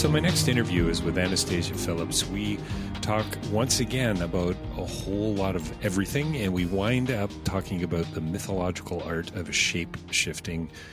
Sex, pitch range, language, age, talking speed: male, 90-110 Hz, English, 40-59, 160 wpm